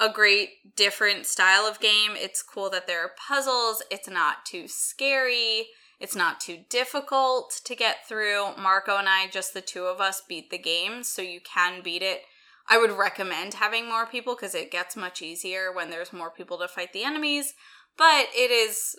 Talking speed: 195 wpm